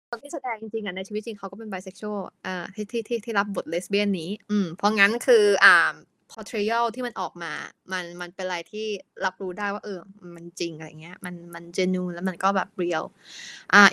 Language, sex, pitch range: Thai, female, 195-255 Hz